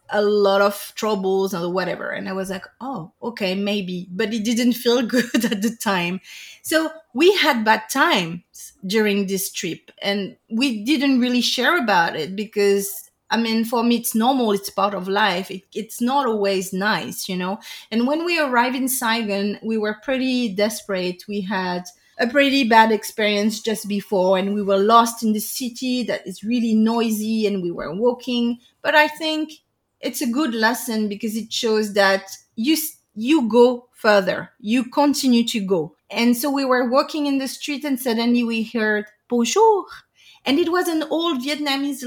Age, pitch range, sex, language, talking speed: 30-49, 205-255 Hz, female, English, 175 wpm